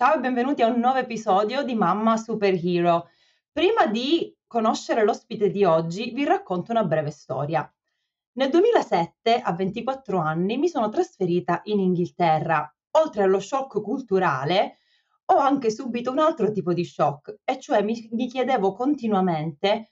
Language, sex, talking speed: Italian, female, 145 wpm